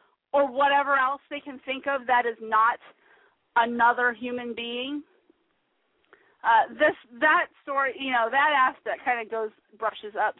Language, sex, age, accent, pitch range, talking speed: English, female, 40-59, American, 225-325 Hz, 150 wpm